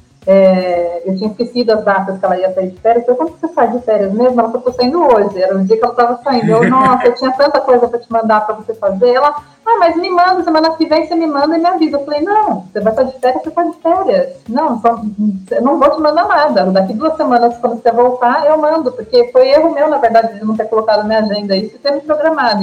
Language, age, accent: Portuguese, 30-49, Brazilian